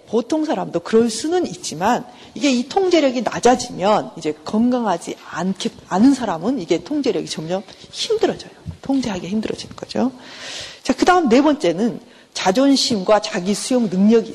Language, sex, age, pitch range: Korean, female, 50-69, 195-330 Hz